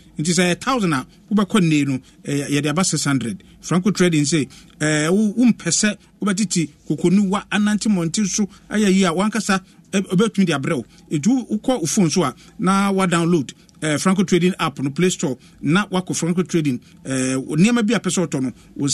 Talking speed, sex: 160 wpm, male